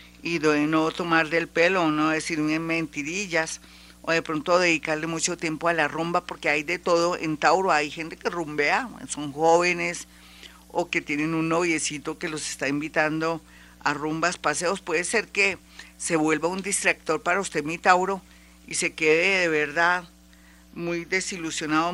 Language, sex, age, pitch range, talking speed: Spanish, female, 50-69, 155-175 Hz, 160 wpm